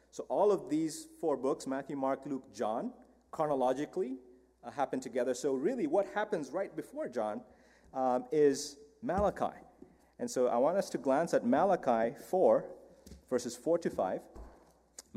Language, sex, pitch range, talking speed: English, male, 125-190 Hz, 150 wpm